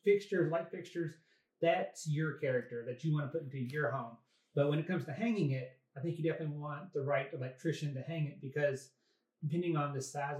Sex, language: male, English